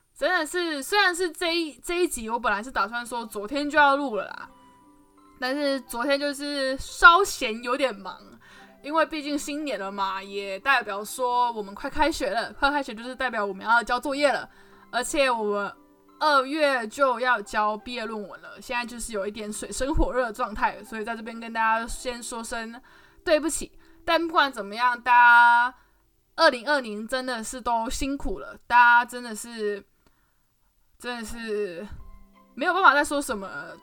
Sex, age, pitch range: female, 10-29, 215-280 Hz